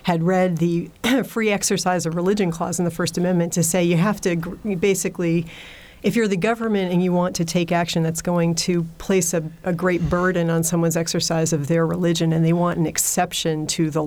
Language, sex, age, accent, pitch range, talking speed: English, female, 40-59, American, 160-180 Hz, 215 wpm